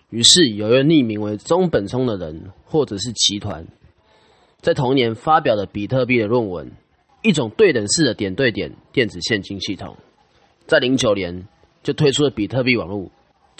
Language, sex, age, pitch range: Chinese, male, 20-39, 100-135 Hz